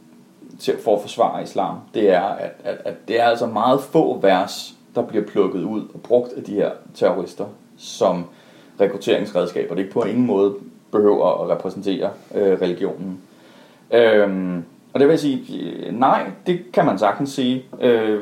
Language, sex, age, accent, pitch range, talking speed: Danish, male, 30-49, native, 100-135 Hz, 170 wpm